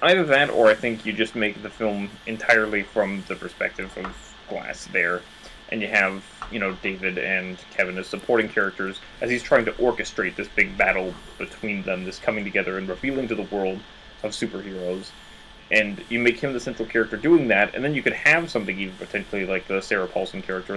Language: English